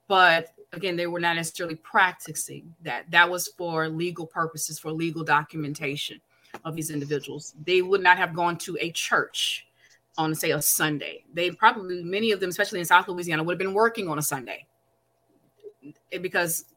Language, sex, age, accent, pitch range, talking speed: English, female, 30-49, American, 160-190 Hz, 170 wpm